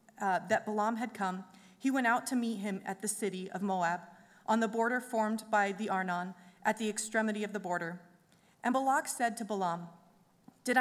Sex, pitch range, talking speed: female, 195-240 Hz, 195 wpm